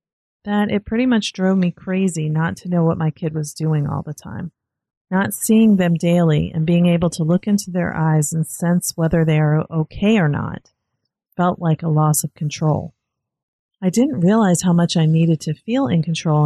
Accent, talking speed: American, 200 wpm